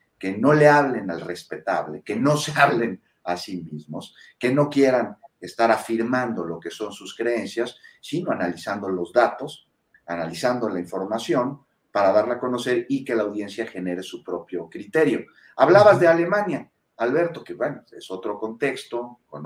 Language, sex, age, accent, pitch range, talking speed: Spanish, male, 40-59, Mexican, 100-135 Hz, 160 wpm